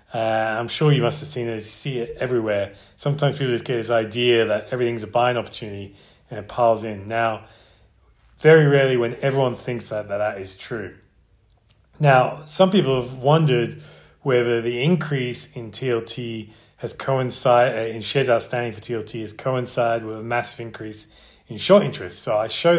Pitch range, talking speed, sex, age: 110-130 Hz, 175 wpm, male, 30-49